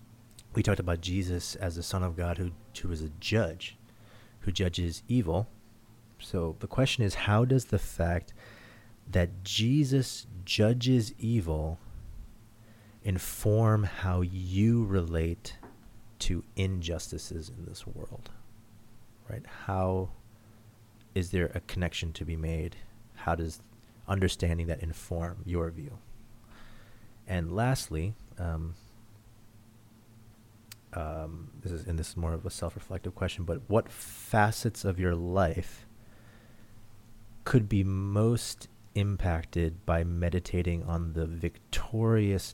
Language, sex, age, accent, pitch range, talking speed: English, male, 30-49, American, 85-110 Hz, 115 wpm